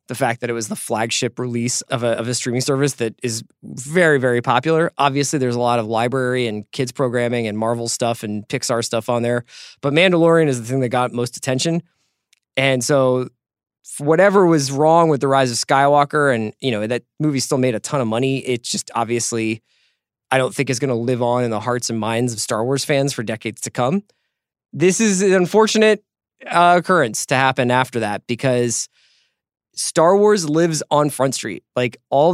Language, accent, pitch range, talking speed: English, American, 120-145 Hz, 200 wpm